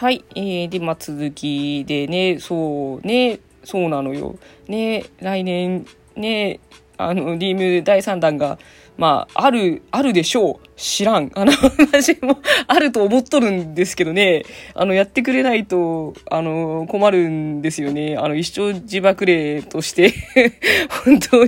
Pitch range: 180-275 Hz